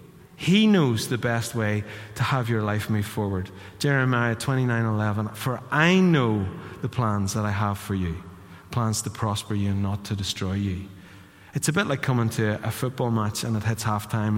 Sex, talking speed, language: male, 190 wpm, English